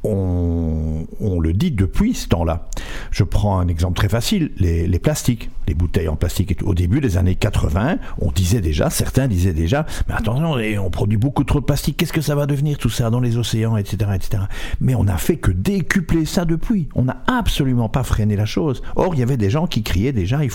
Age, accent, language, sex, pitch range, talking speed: 60-79, French, French, male, 90-115 Hz, 230 wpm